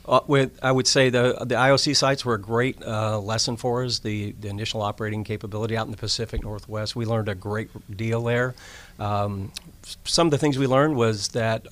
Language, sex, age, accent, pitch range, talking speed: English, male, 50-69, American, 100-115 Hz, 210 wpm